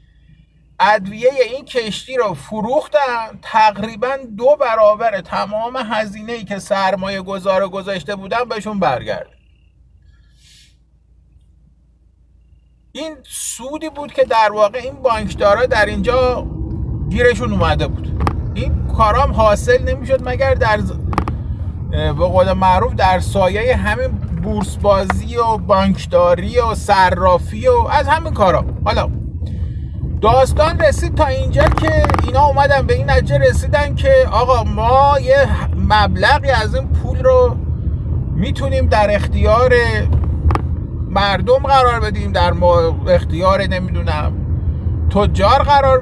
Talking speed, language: 110 wpm, Persian